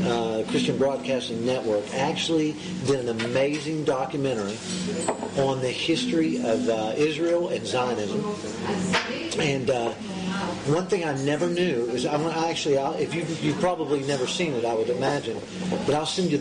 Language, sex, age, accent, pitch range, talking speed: English, male, 40-59, American, 125-170 Hz, 140 wpm